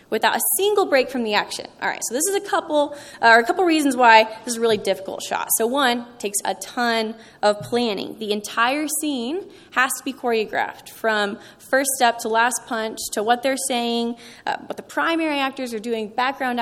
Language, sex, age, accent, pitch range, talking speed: English, female, 20-39, American, 220-280 Hz, 215 wpm